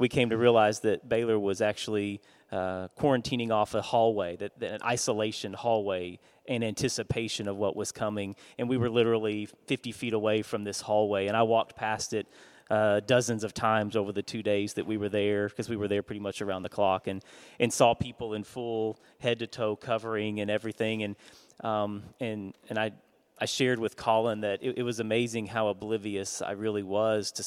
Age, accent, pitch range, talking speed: 30-49, American, 105-135 Hz, 200 wpm